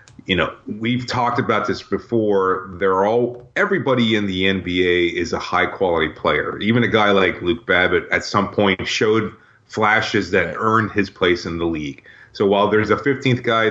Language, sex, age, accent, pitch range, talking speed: English, male, 30-49, American, 95-105 Hz, 185 wpm